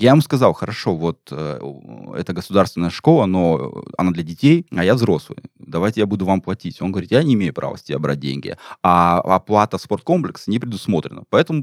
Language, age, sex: Russian, 20-39, male